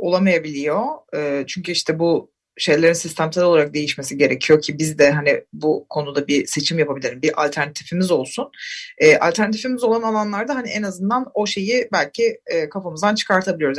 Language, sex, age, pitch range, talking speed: Turkish, female, 30-49, 150-215 Hz, 140 wpm